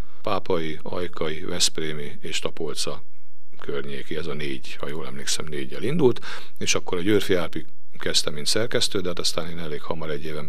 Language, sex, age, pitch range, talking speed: Hungarian, male, 50-69, 80-95 Hz, 165 wpm